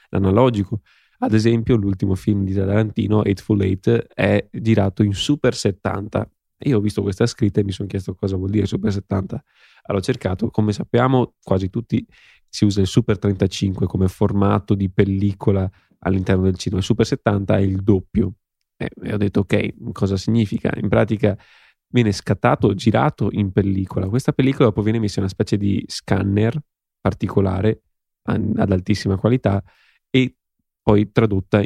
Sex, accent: male, native